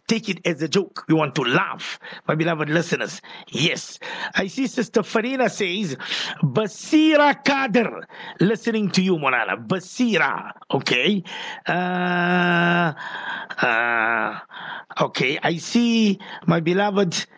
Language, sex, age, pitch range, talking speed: English, male, 50-69, 175-220 Hz, 115 wpm